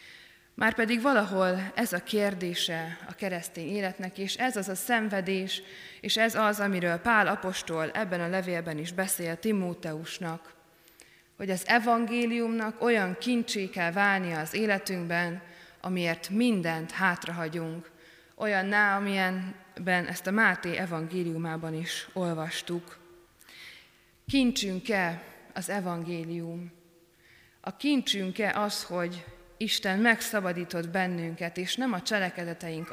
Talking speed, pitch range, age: 110 wpm, 170-205 Hz, 20-39